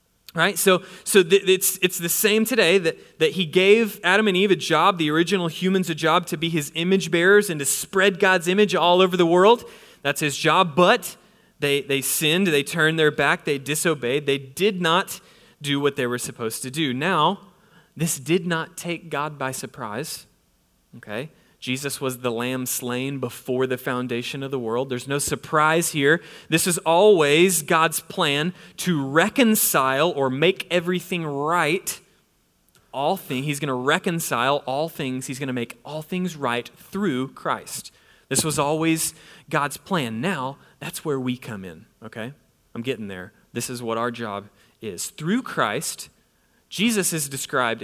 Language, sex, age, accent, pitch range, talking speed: English, male, 30-49, American, 135-185 Hz, 175 wpm